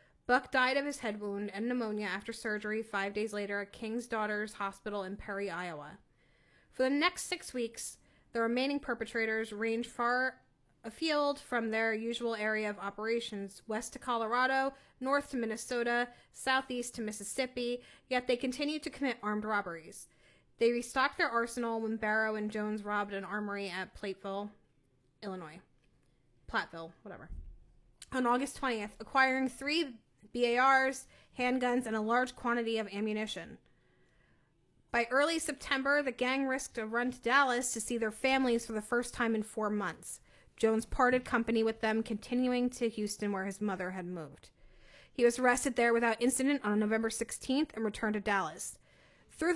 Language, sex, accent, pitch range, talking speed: English, female, American, 210-250 Hz, 155 wpm